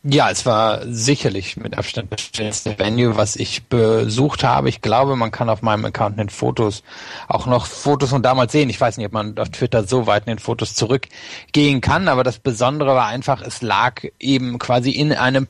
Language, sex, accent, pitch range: German, male, German, 115-135 Hz